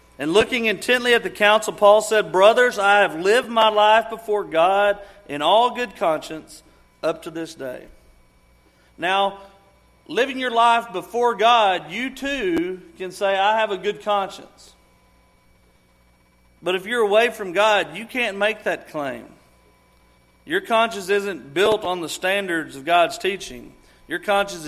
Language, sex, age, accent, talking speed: English, male, 40-59, American, 150 wpm